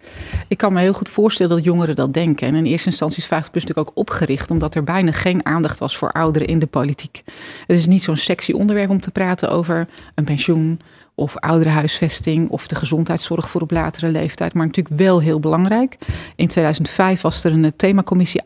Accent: Dutch